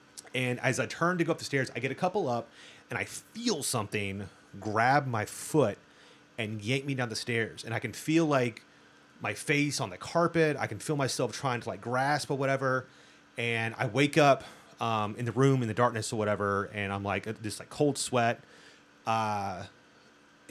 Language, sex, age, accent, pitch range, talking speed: English, male, 30-49, American, 105-135 Hz, 200 wpm